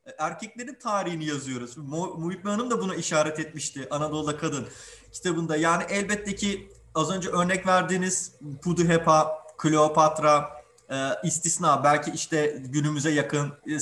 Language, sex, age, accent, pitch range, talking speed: Turkish, male, 30-49, native, 145-175 Hz, 120 wpm